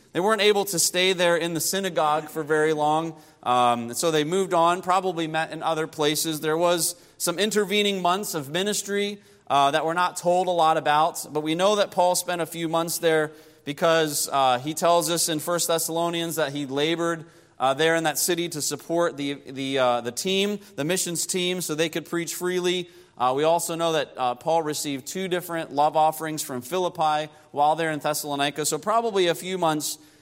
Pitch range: 145-175 Hz